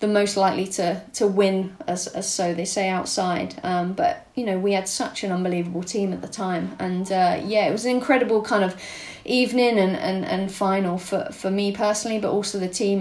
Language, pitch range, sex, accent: English, 190-210 Hz, female, British